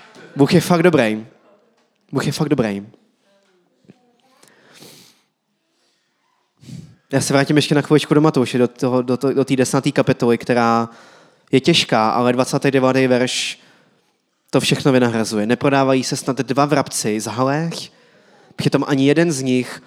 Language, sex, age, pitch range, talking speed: Czech, male, 20-39, 115-135 Hz, 125 wpm